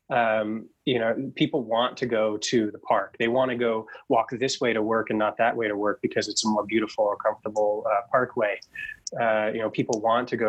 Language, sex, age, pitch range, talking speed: English, male, 20-39, 105-120 Hz, 235 wpm